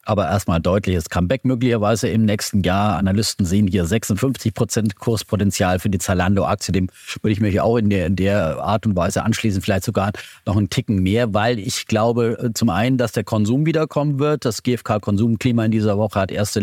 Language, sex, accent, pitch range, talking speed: German, male, German, 95-115 Hz, 190 wpm